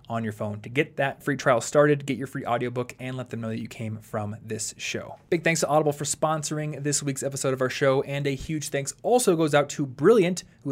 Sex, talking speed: male, 250 wpm